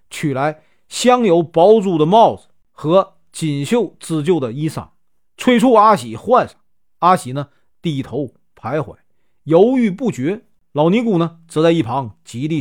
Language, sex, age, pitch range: Chinese, male, 40-59, 145-205 Hz